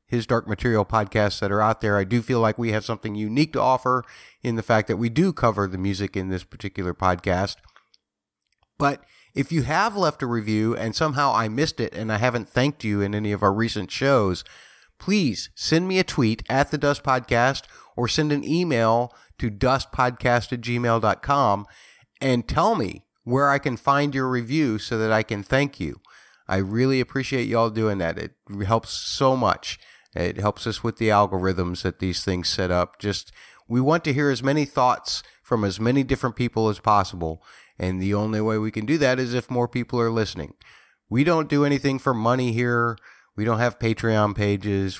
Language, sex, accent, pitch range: English, male, American, 105-130 Hz